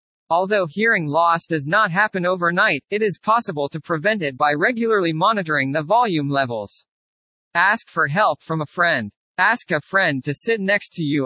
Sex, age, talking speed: male, 40-59, 175 wpm